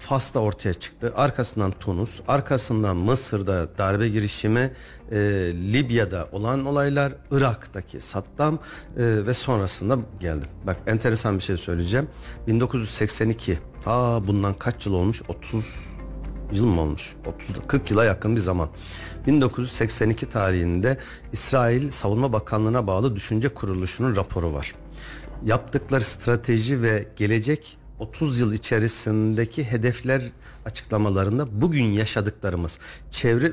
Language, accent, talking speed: Turkish, native, 110 wpm